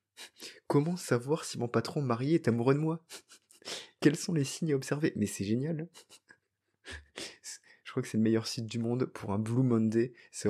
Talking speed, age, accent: 190 wpm, 20-39, French